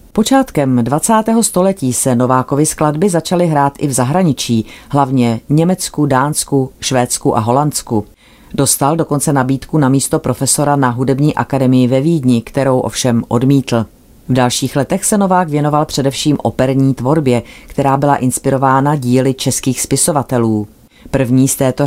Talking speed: 135 wpm